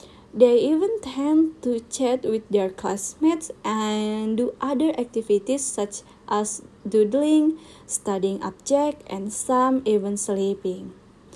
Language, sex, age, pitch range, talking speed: Indonesian, female, 20-39, 210-275 Hz, 115 wpm